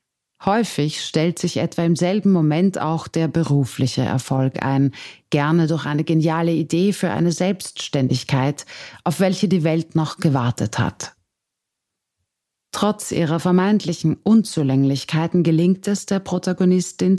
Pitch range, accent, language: 140-180 Hz, German, German